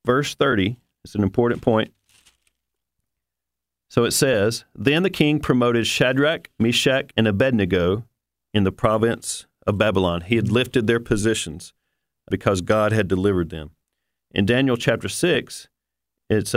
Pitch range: 100-125 Hz